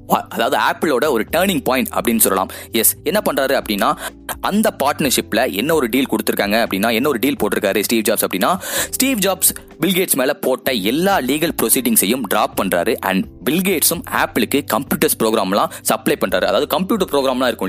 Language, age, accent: Tamil, 20-39, native